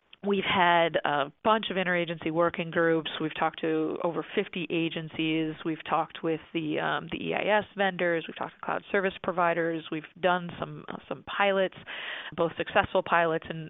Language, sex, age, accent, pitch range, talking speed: English, female, 30-49, American, 160-185 Hz, 165 wpm